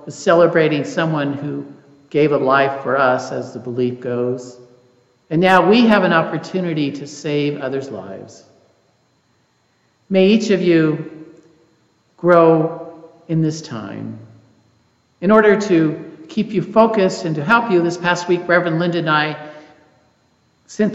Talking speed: 135 wpm